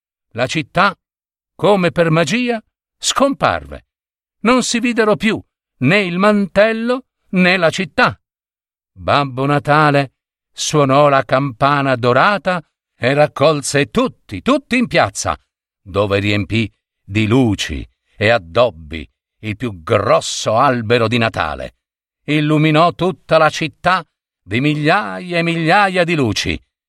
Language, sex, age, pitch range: Italian, male, 50-69, 115-190 Hz